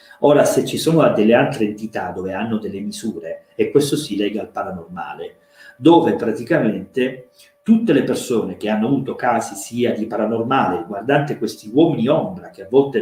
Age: 40-59